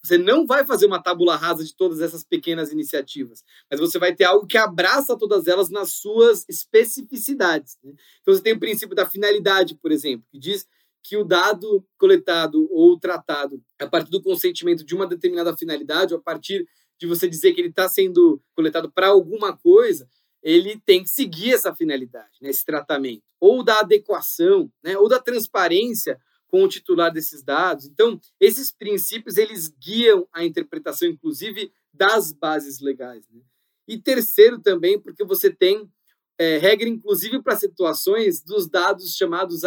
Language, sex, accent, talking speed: Portuguese, male, Brazilian, 165 wpm